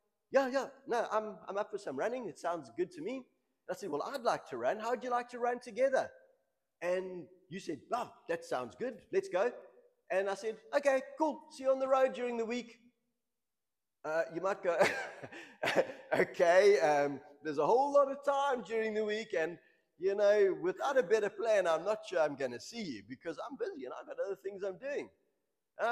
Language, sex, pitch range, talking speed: English, male, 180-280 Hz, 215 wpm